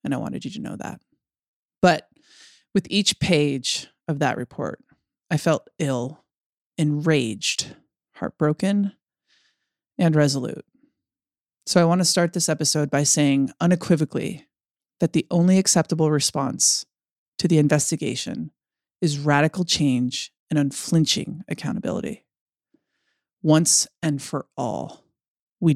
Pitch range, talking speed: 150-175 Hz, 115 wpm